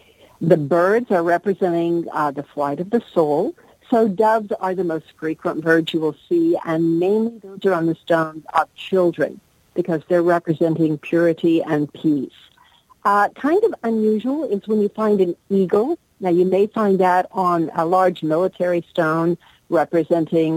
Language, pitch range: English, 165-215 Hz